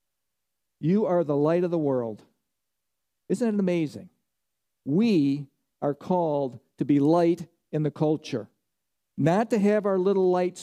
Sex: male